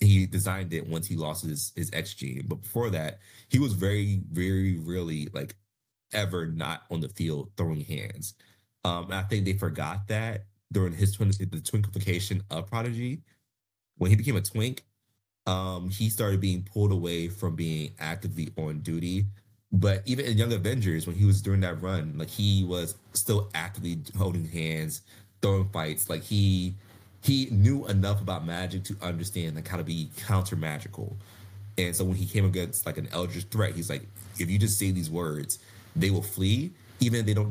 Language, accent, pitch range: English, American, 85-105 Hz